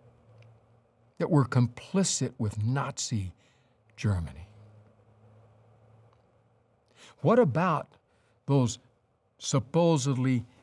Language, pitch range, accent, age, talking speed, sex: English, 110-165 Hz, American, 60-79, 55 wpm, male